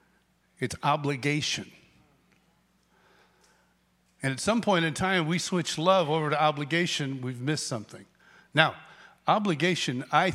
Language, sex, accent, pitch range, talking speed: English, male, American, 120-170 Hz, 115 wpm